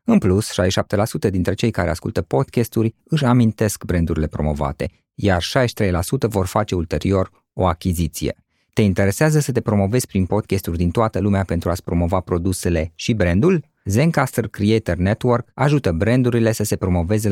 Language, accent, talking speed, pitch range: Romanian, native, 150 wpm, 90-125 Hz